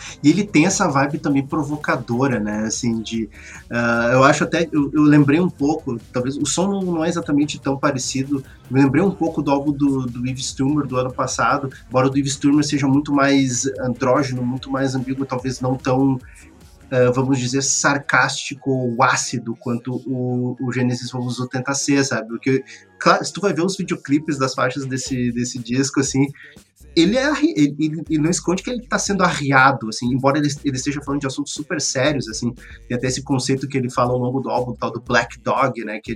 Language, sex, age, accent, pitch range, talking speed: Portuguese, male, 20-39, Brazilian, 125-145 Hz, 200 wpm